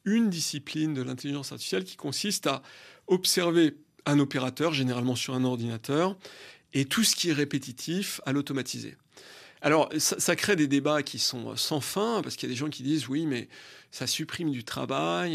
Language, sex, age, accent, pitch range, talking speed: French, male, 40-59, French, 135-165 Hz, 185 wpm